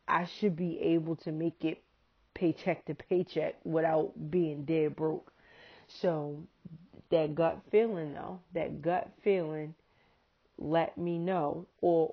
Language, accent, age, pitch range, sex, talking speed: English, American, 30-49, 160-195 Hz, female, 130 wpm